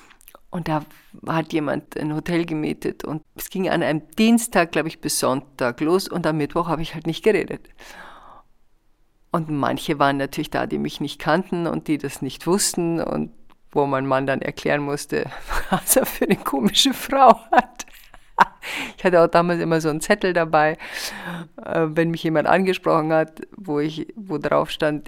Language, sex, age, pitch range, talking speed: German, female, 50-69, 150-180 Hz, 175 wpm